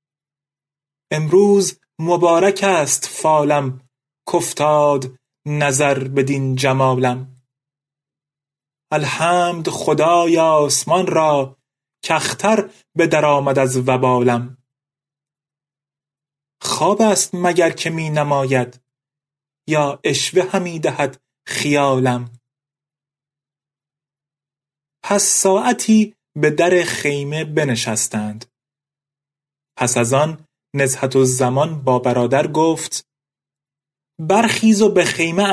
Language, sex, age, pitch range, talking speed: Persian, male, 30-49, 140-175 Hz, 80 wpm